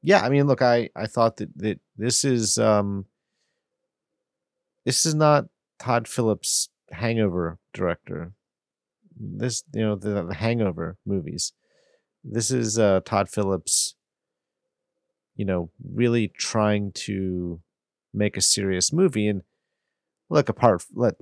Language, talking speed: English, 120 wpm